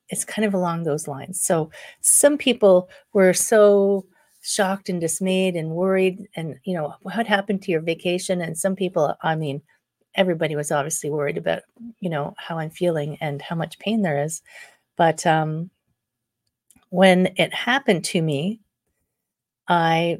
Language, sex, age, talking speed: English, female, 40-59, 155 wpm